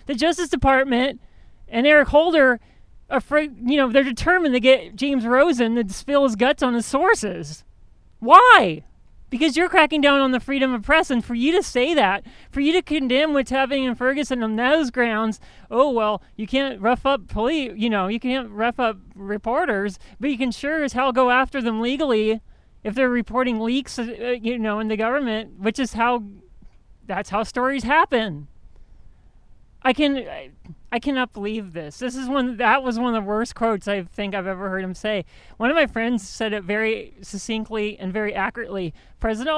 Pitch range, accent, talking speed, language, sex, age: 205-265 Hz, American, 190 wpm, English, male, 30-49